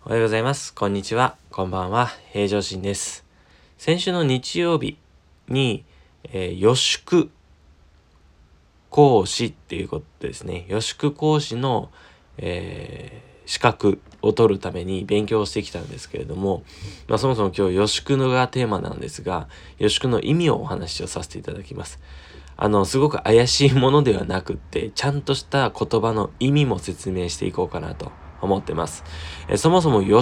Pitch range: 85-130 Hz